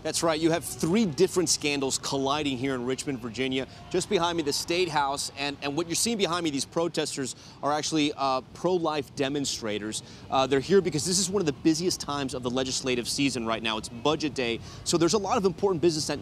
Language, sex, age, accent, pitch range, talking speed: English, male, 30-49, American, 130-170 Hz, 220 wpm